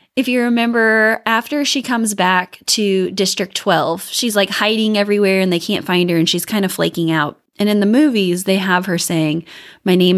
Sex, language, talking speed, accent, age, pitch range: female, English, 205 wpm, American, 20-39, 180-245 Hz